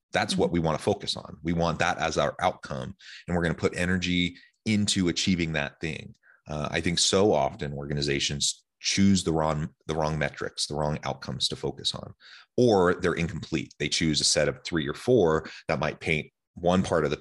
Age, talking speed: 30-49, 205 wpm